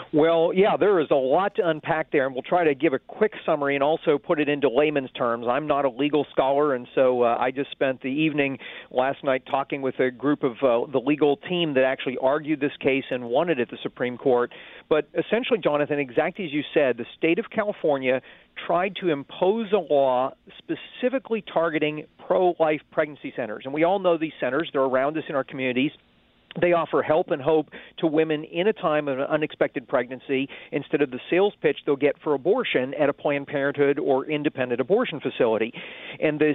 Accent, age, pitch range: American, 50-69, 135-185 Hz